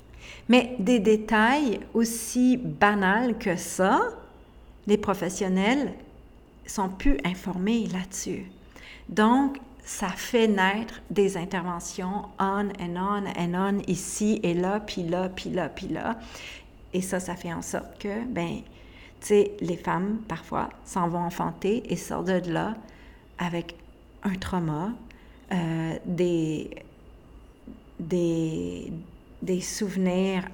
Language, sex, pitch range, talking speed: French, female, 175-215 Hz, 120 wpm